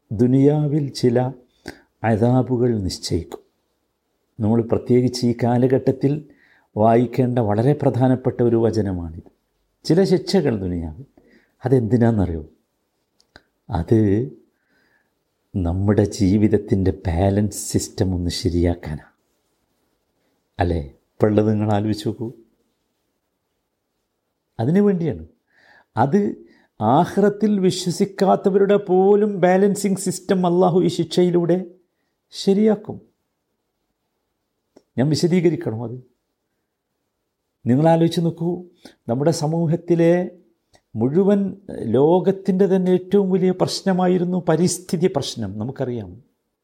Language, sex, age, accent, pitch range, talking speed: Malayalam, male, 50-69, native, 115-175 Hz, 70 wpm